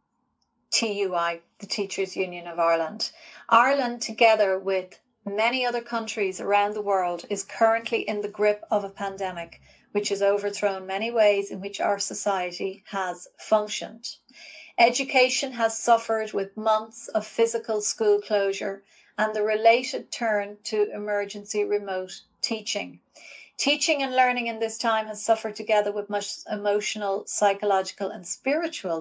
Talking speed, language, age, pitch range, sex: 135 wpm, English, 40-59, 195-230 Hz, female